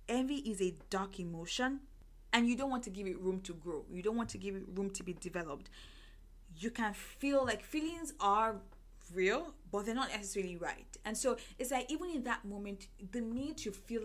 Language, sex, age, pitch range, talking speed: English, female, 10-29, 185-235 Hz, 210 wpm